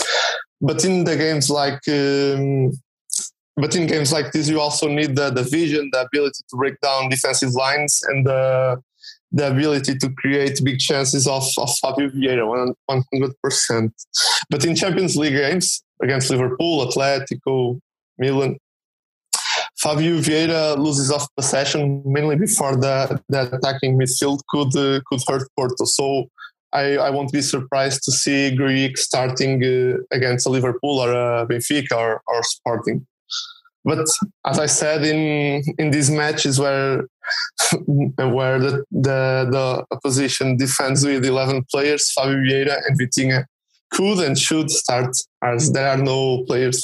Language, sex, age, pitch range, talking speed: English, male, 20-39, 130-150 Hz, 145 wpm